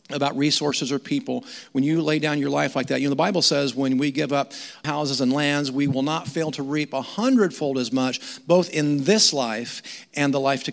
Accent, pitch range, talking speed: American, 140-175 Hz, 235 wpm